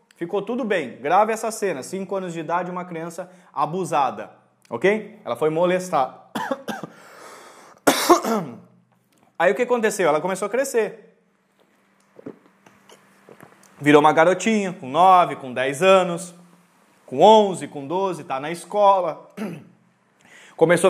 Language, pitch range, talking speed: Portuguese, 170-230 Hz, 120 wpm